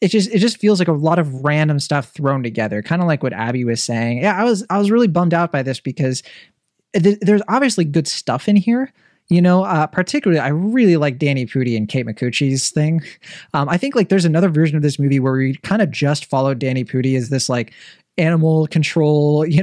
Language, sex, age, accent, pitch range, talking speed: English, male, 20-39, American, 140-190 Hz, 230 wpm